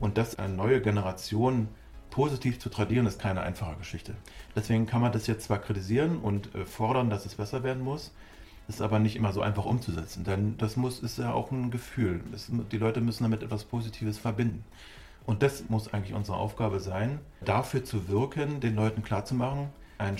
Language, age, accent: German, 40-59, German